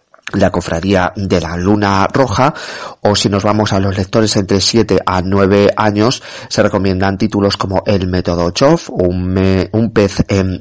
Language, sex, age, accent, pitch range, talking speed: Spanish, male, 30-49, Spanish, 95-110 Hz, 170 wpm